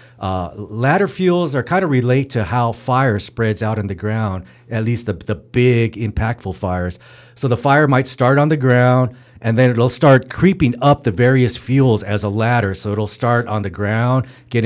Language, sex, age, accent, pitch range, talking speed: English, male, 40-59, American, 105-130 Hz, 200 wpm